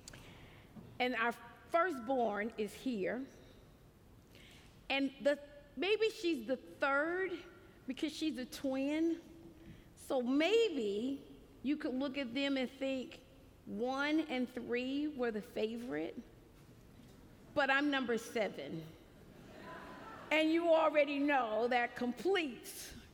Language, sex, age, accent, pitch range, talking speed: English, female, 50-69, American, 235-300 Hz, 105 wpm